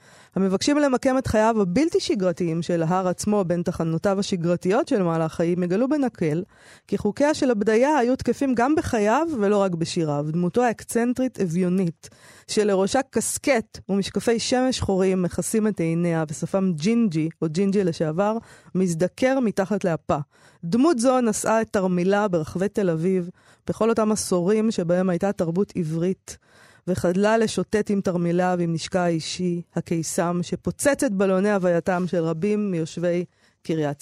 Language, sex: Hebrew, female